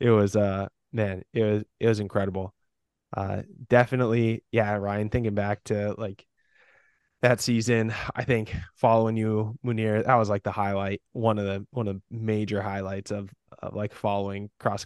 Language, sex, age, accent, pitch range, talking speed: English, male, 20-39, American, 100-115 Hz, 170 wpm